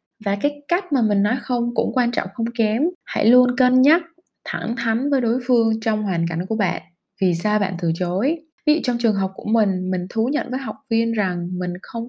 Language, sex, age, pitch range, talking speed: Vietnamese, female, 20-39, 200-250 Hz, 230 wpm